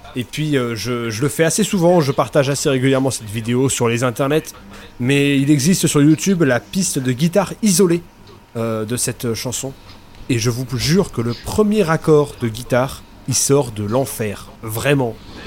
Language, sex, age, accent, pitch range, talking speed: English, male, 30-49, French, 115-155 Hz, 180 wpm